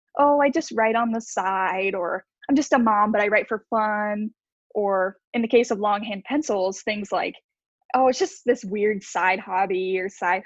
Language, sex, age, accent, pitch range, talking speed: English, female, 10-29, American, 205-255 Hz, 200 wpm